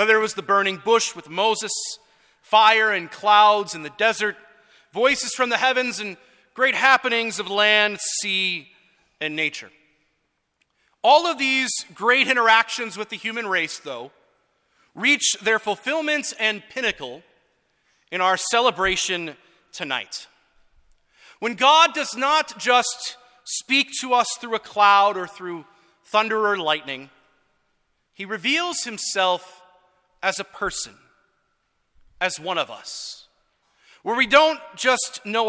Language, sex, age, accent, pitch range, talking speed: English, male, 40-59, American, 190-245 Hz, 130 wpm